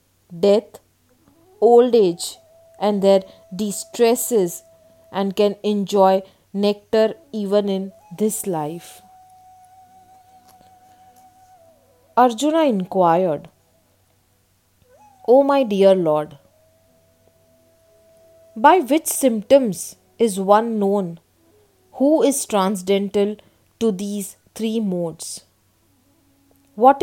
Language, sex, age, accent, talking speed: English, female, 20-39, Indian, 80 wpm